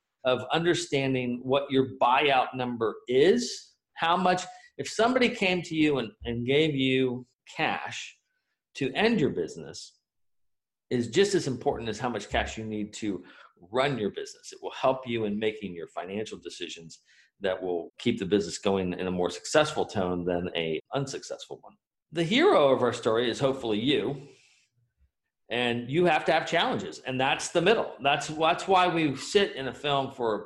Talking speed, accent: 175 wpm, American